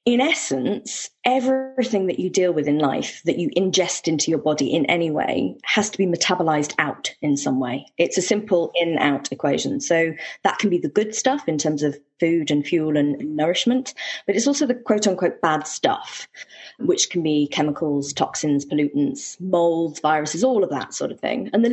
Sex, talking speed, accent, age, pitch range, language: female, 190 wpm, British, 20-39, 160-210 Hz, English